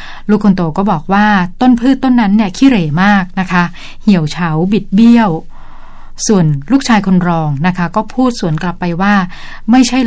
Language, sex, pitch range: Thai, female, 175-215 Hz